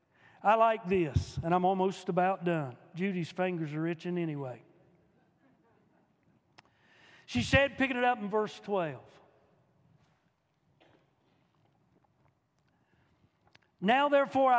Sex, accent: male, American